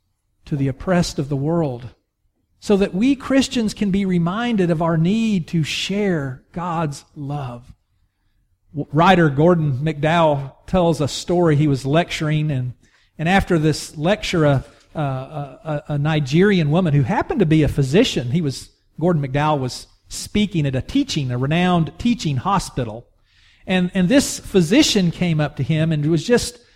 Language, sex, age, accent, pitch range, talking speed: English, male, 40-59, American, 145-205 Hz, 155 wpm